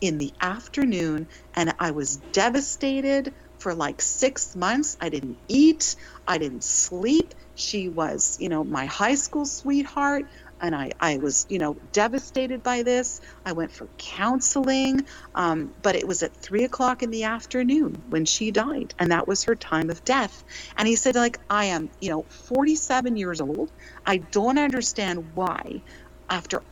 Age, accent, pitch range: 40-59, American, 180-270 Hz